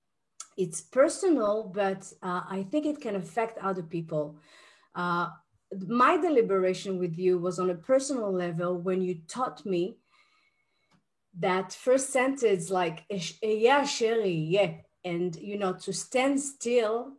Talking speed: 135 wpm